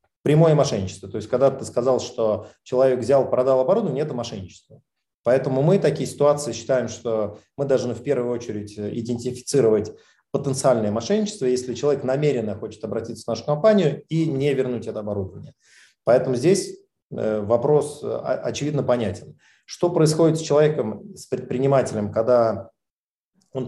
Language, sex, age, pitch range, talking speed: Russian, male, 30-49, 115-140 Hz, 135 wpm